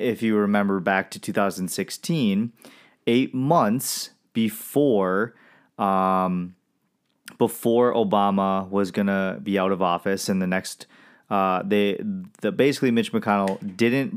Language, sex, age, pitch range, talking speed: English, male, 30-49, 95-115 Hz, 125 wpm